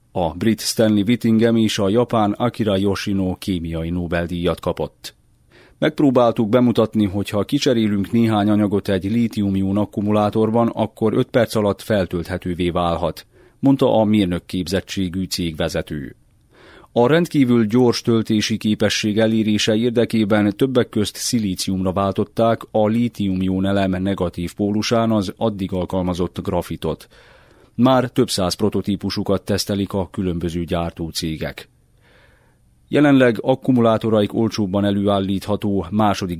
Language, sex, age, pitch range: Hungarian, male, 30-49, 95-110 Hz